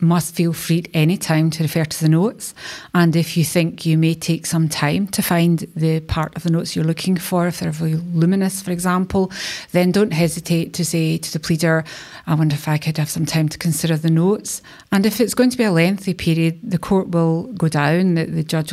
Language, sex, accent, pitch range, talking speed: English, female, British, 160-175 Hz, 235 wpm